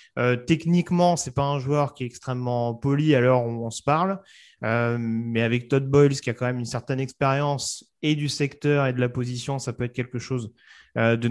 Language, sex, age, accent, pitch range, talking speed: French, male, 30-49, French, 115-145 Hz, 225 wpm